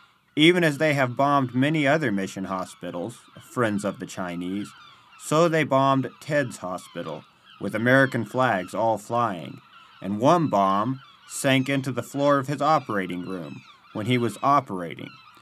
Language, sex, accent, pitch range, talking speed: English, male, American, 100-140 Hz, 150 wpm